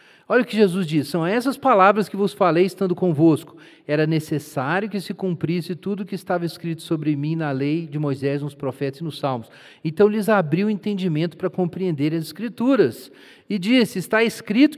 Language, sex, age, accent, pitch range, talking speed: Portuguese, male, 40-59, Brazilian, 150-215 Hz, 190 wpm